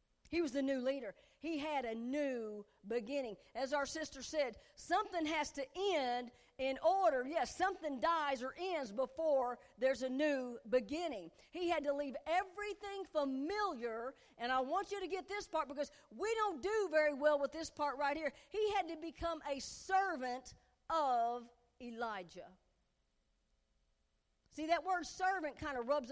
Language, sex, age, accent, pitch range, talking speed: English, female, 50-69, American, 235-340 Hz, 160 wpm